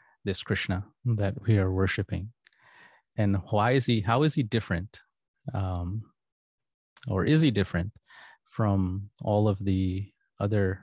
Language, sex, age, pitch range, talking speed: English, male, 20-39, 95-115 Hz, 135 wpm